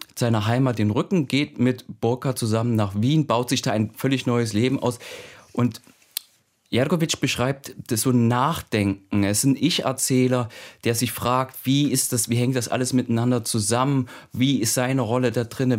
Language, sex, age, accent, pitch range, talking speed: German, male, 30-49, German, 115-130 Hz, 180 wpm